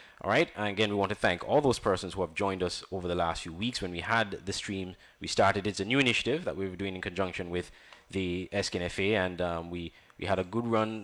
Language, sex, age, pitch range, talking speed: English, male, 20-39, 90-110 Hz, 260 wpm